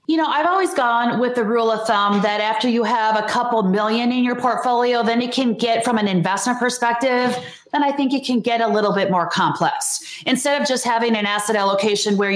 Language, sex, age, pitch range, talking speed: English, female, 30-49, 220-280 Hz, 230 wpm